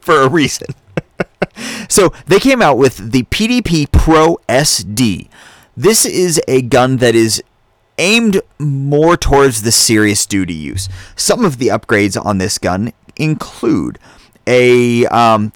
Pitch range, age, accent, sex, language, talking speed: 105-150 Hz, 30-49, American, male, English, 135 wpm